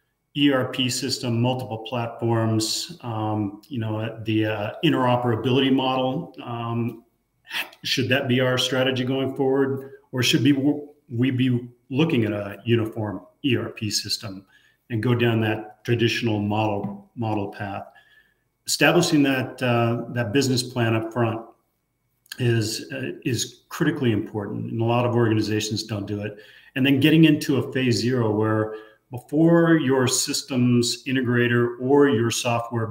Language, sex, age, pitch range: English, male, 40-59, 115-130 Hz